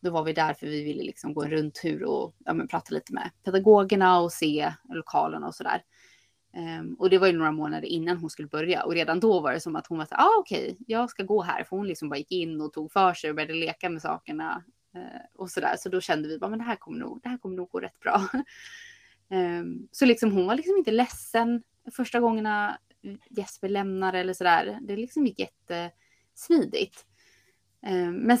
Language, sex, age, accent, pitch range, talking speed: Swedish, female, 20-39, native, 155-205 Hz, 210 wpm